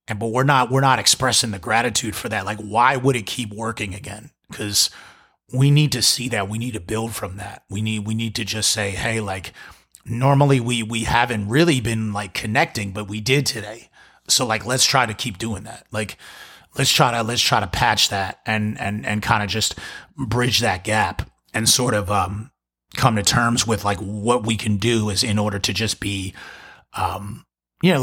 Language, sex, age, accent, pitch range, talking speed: English, male, 30-49, American, 105-125 Hz, 210 wpm